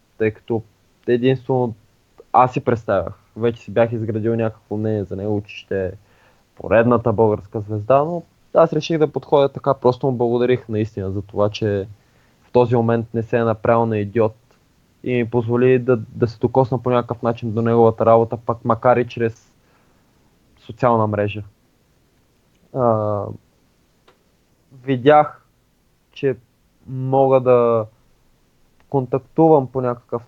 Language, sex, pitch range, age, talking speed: English, male, 115-135 Hz, 20-39, 135 wpm